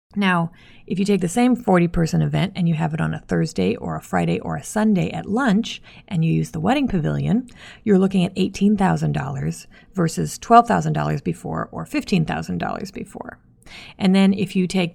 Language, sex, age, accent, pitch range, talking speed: English, female, 30-49, American, 165-215 Hz, 180 wpm